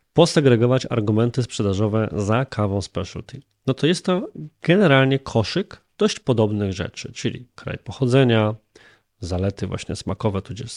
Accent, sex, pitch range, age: native, male, 100-130 Hz, 20-39